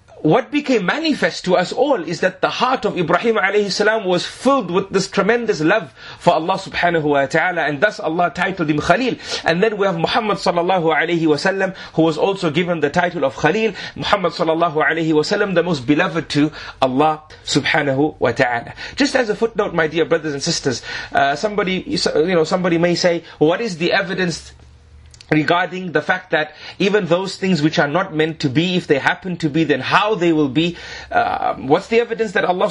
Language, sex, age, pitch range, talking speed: English, male, 30-49, 160-205 Hz, 200 wpm